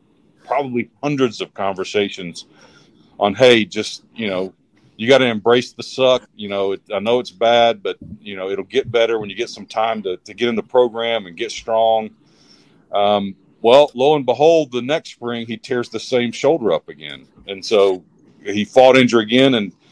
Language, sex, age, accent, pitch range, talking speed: English, male, 40-59, American, 105-130 Hz, 195 wpm